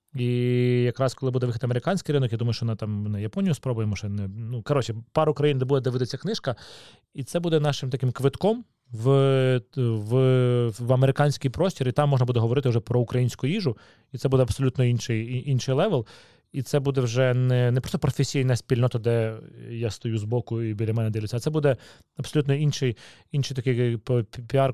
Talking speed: 190 wpm